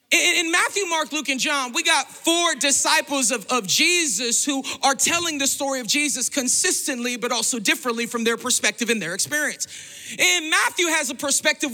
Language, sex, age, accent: English, male, 40-59, American